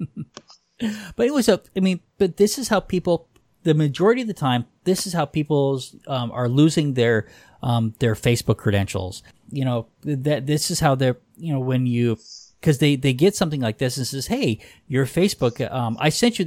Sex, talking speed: male, 195 wpm